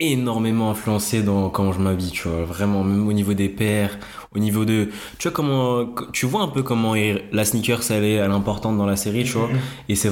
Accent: French